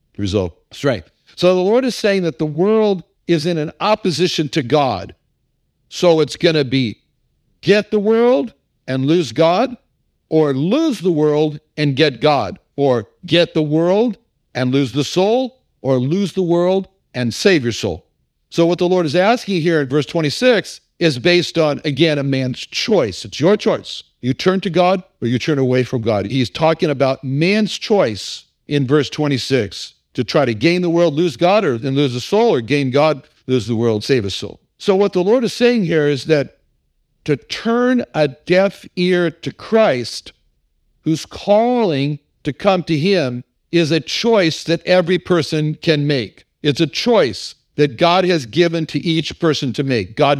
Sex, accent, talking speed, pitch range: male, American, 180 wpm, 135-180 Hz